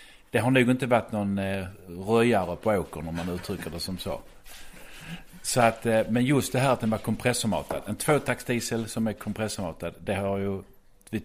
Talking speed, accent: 185 wpm, native